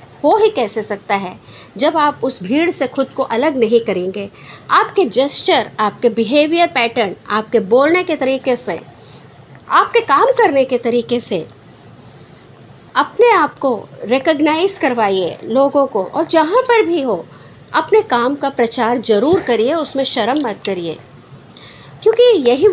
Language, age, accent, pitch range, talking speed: Hindi, 50-69, native, 225-330 Hz, 145 wpm